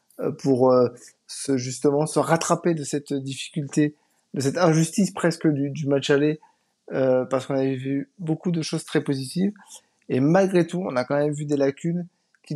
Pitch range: 140-170 Hz